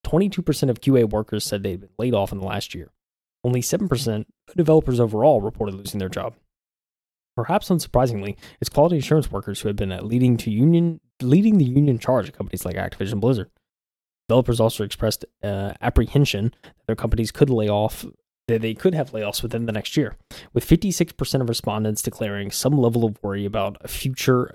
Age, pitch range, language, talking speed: 20-39, 105-130 Hz, English, 190 wpm